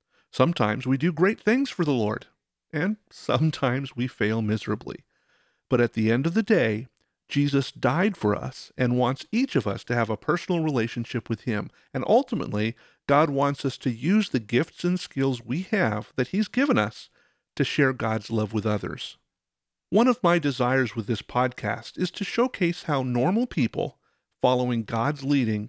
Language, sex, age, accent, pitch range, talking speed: English, male, 50-69, American, 115-160 Hz, 175 wpm